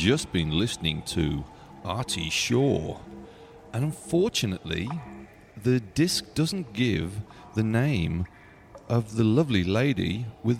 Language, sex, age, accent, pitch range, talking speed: English, male, 40-59, British, 90-120 Hz, 110 wpm